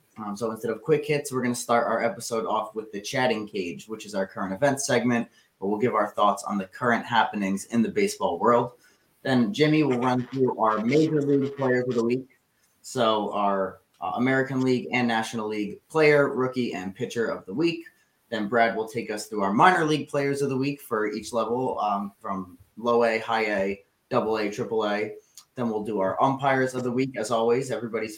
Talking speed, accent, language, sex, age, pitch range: 215 wpm, American, English, male, 20-39, 110-135 Hz